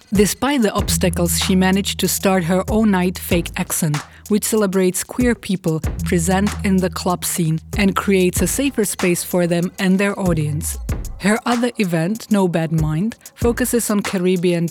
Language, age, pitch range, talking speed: Czech, 30-49, 165-195 Hz, 165 wpm